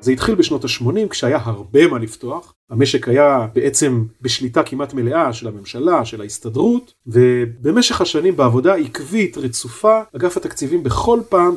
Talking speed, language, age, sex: 140 wpm, Hebrew, 40-59, male